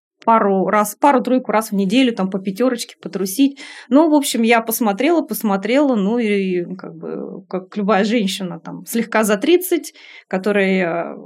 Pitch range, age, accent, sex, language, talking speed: 195-250 Hz, 20-39, native, female, Russian, 150 wpm